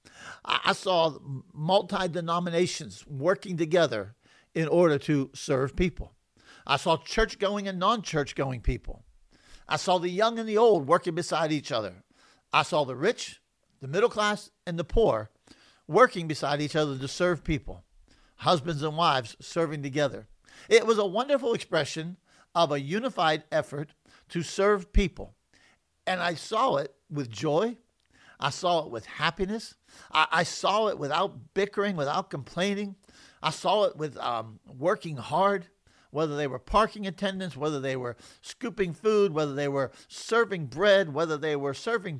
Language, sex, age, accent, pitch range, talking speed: English, male, 50-69, American, 145-195 Hz, 150 wpm